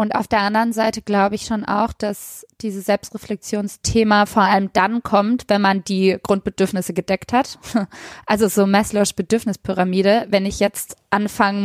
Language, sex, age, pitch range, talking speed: German, female, 20-39, 195-225 Hz, 155 wpm